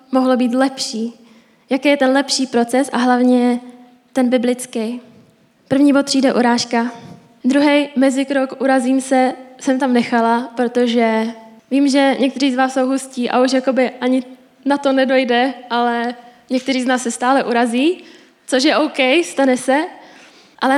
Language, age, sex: Czech, 10-29, female